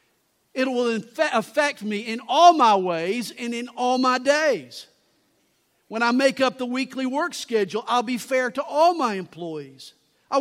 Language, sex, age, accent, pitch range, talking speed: English, male, 50-69, American, 205-275 Hz, 165 wpm